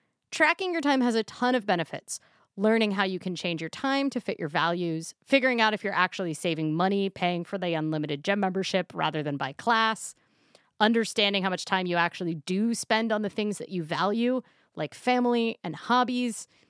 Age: 30-49